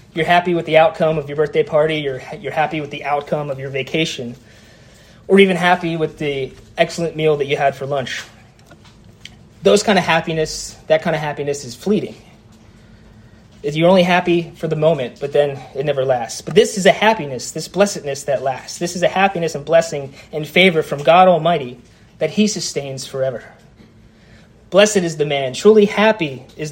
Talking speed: 185 wpm